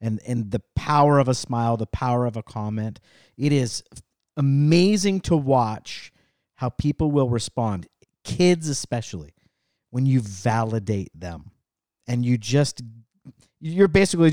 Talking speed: 135 wpm